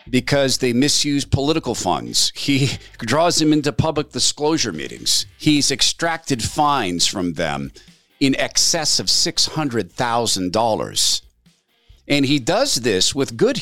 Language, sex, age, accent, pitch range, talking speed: English, male, 50-69, American, 110-155 Hz, 130 wpm